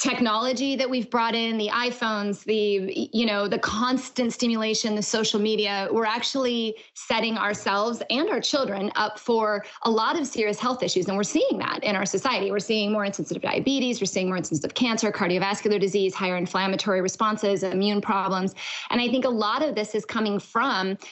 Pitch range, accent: 205-240 Hz, American